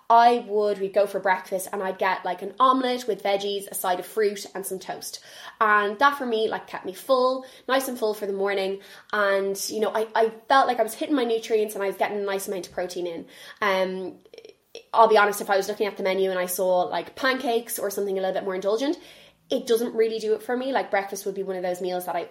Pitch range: 190-225 Hz